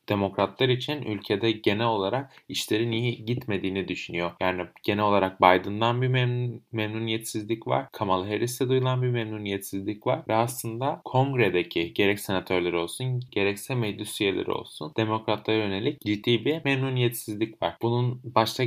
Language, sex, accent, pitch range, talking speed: Turkish, male, native, 100-125 Hz, 130 wpm